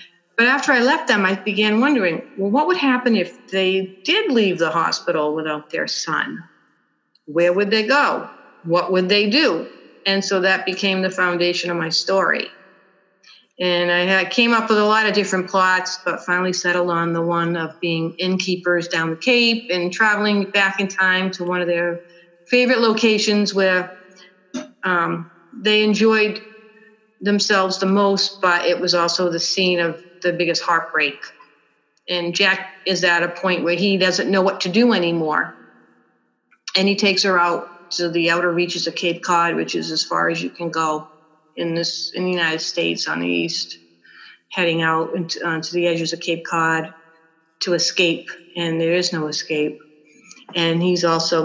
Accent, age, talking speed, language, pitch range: American, 50-69, 175 wpm, English, 170-195 Hz